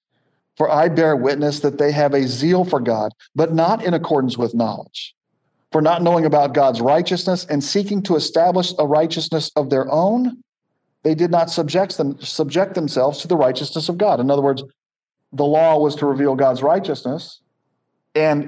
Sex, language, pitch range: male, English, 140-165 Hz